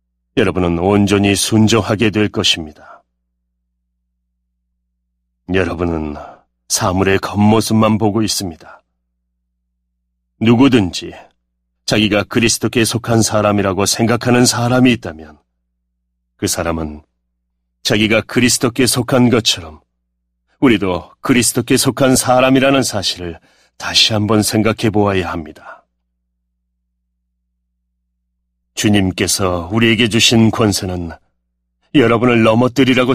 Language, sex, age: Korean, male, 40-59